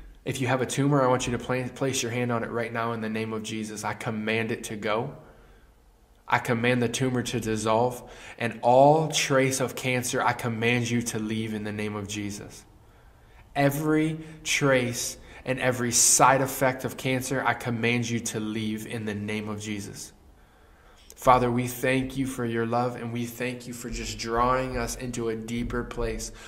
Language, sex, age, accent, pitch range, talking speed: English, male, 20-39, American, 105-120 Hz, 190 wpm